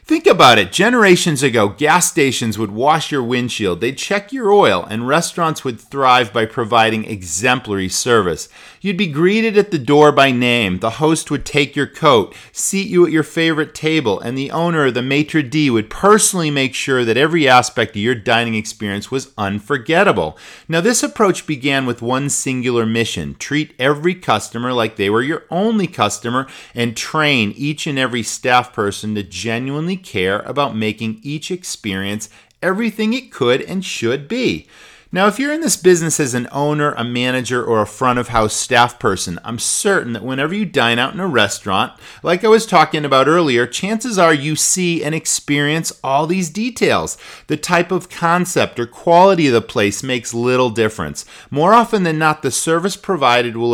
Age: 40-59